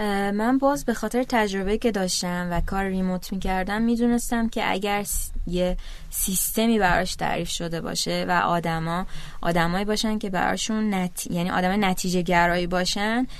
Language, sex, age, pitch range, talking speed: Persian, female, 20-39, 190-240 Hz, 150 wpm